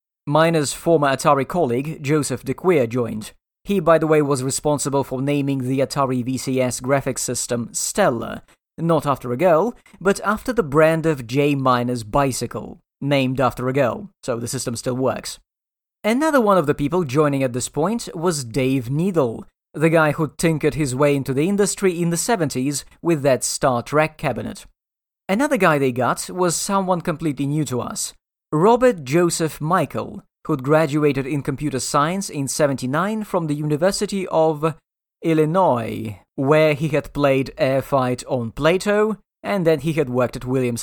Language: English